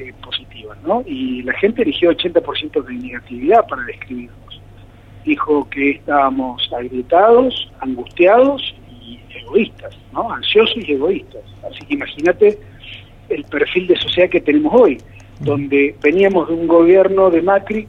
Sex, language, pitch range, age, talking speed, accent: male, Spanish, 130-205 Hz, 40-59, 130 wpm, Argentinian